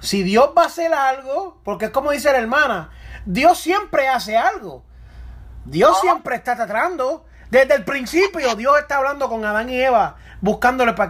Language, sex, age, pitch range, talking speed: Spanish, male, 30-49, 205-270 Hz, 175 wpm